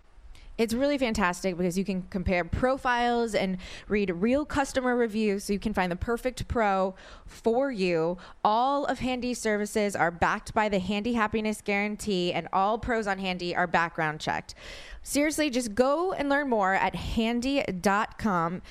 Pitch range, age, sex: 185-245 Hz, 20-39, female